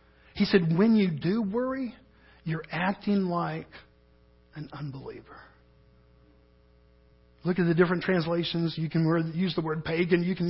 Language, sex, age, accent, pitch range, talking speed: English, male, 40-59, American, 160-205 Hz, 135 wpm